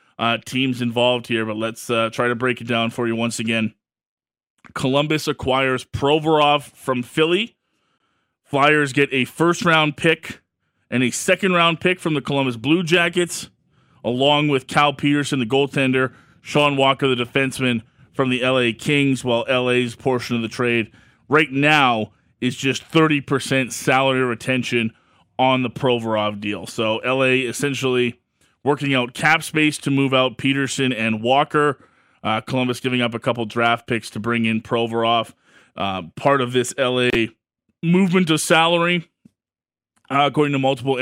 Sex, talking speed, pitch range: male, 150 wpm, 115-145 Hz